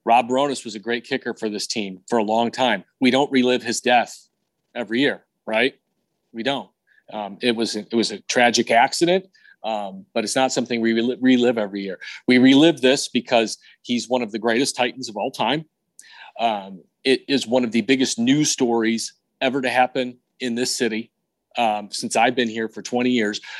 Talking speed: 195 wpm